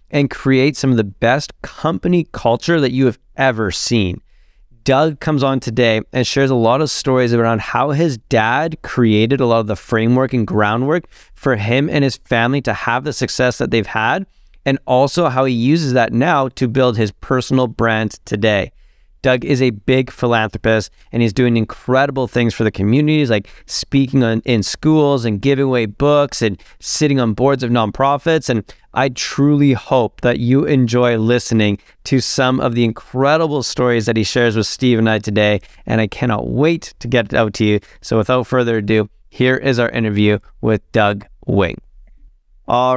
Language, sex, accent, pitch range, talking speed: English, male, American, 110-135 Hz, 185 wpm